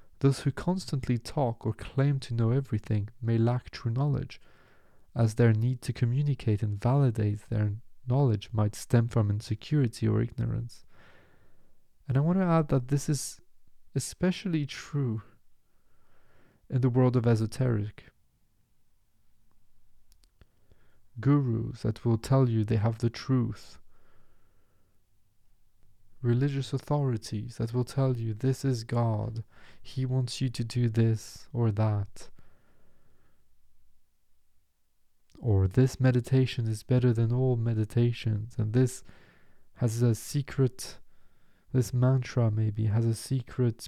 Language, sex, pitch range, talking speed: English, male, 105-130 Hz, 120 wpm